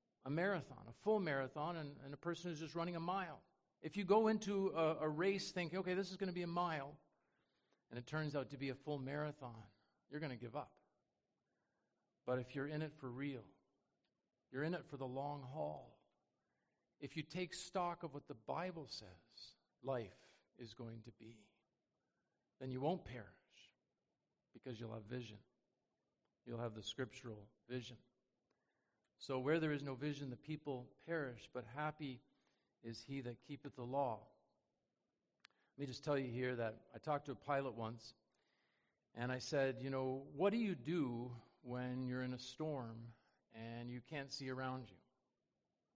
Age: 50-69